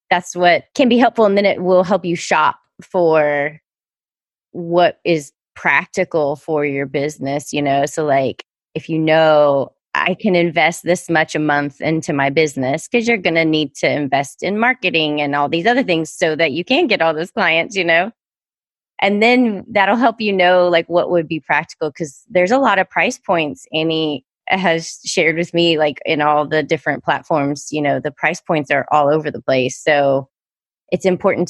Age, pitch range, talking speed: 30-49, 150-185 Hz, 195 wpm